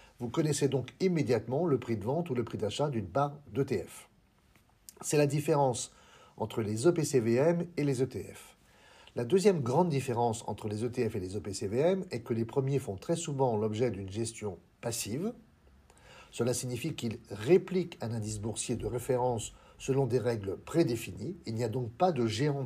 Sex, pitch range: male, 110-150 Hz